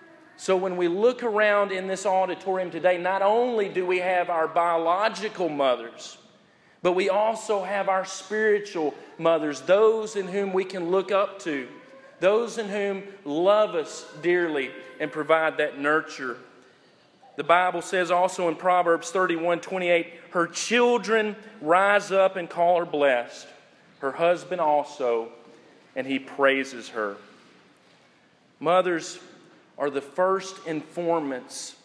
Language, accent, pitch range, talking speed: English, American, 150-195 Hz, 130 wpm